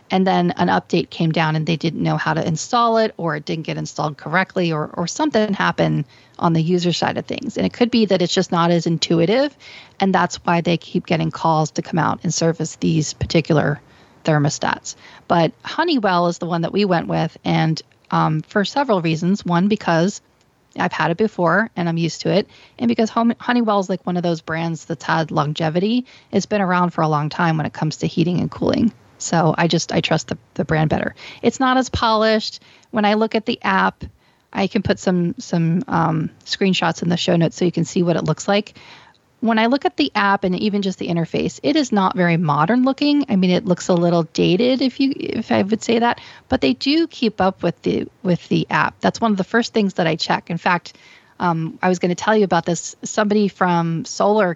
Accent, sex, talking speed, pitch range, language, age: American, female, 230 wpm, 165-215 Hz, English, 40-59